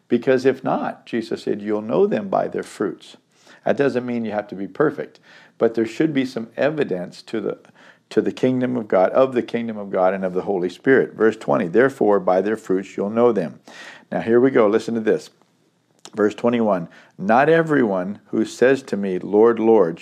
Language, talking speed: English, 200 wpm